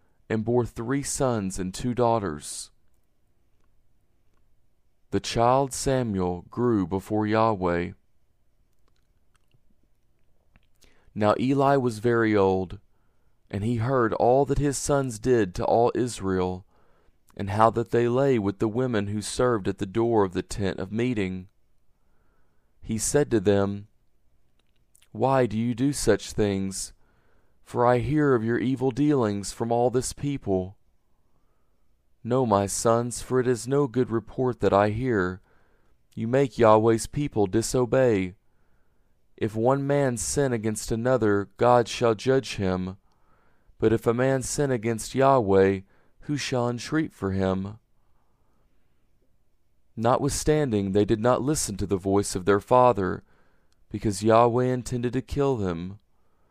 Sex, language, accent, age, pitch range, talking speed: male, English, American, 40-59, 100-125 Hz, 130 wpm